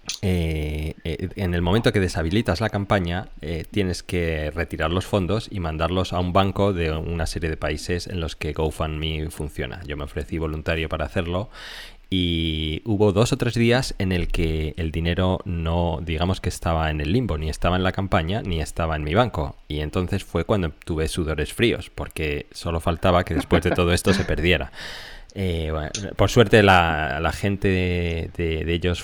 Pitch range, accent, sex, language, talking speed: 80-95 Hz, Spanish, male, Spanish, 190 wpm